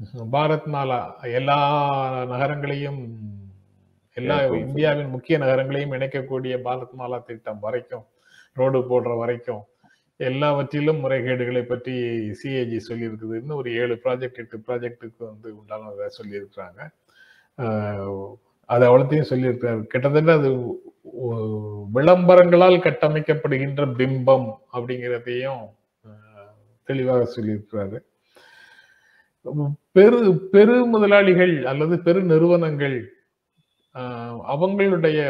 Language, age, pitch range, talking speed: Tamil, 30-49, 120-155 Hz, 80 wpm